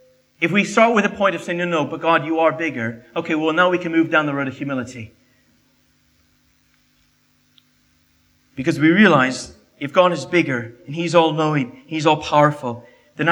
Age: 40-59